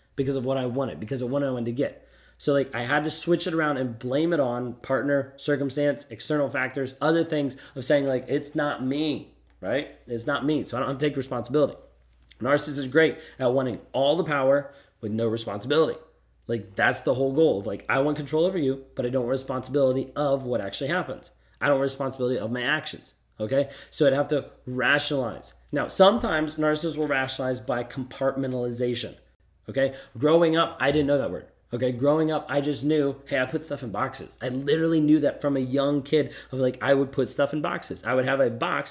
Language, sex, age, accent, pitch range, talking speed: English, male, 20-39, American, 125-145 Hz, 215 wpm